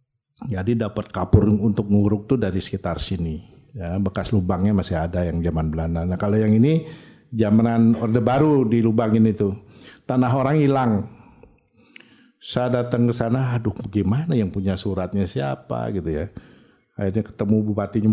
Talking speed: 150 wpm